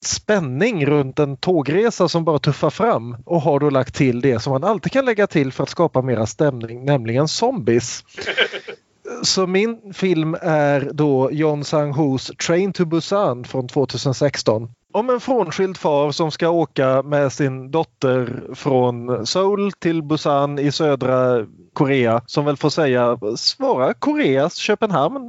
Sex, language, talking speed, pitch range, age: male, Swedish, 150 wpm, 125-170 Hz, 30-49